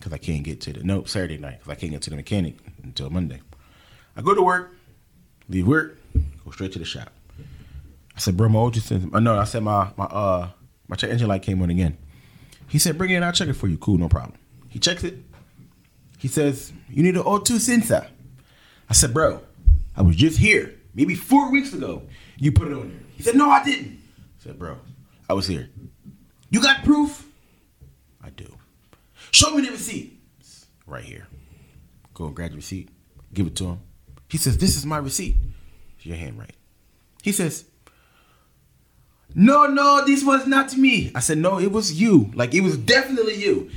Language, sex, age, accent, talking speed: English, male, 30-49, American, 205 wpm